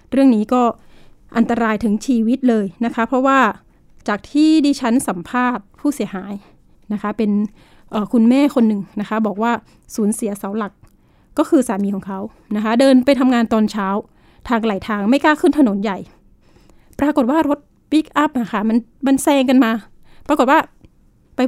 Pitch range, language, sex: 215-270 Hz, Thai, female